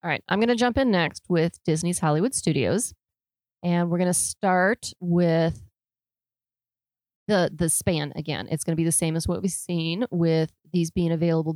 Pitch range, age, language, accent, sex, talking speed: 155-185 Hz, 30-49, English, American, female, 185 wpm